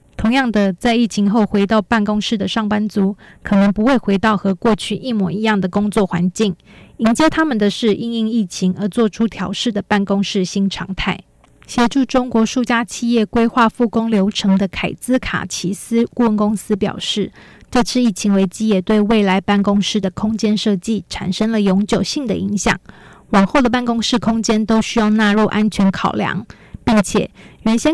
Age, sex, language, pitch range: 20-39, female, German, 200-230 Hz